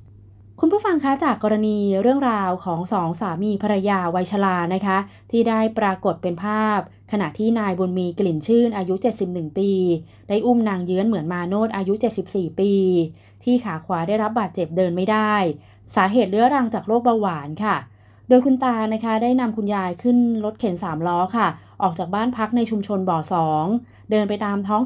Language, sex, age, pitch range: Thai, female, 20-39, 180-220 Hz